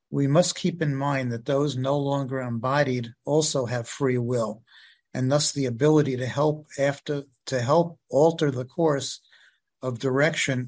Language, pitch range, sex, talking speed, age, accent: English, 125-145 Hz, male, 155 wpm, 50-69, American